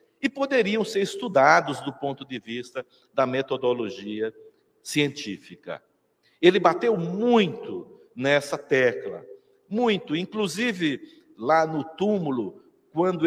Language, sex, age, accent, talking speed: Portuguese, male, 60-79, Brazilian, 100 wpm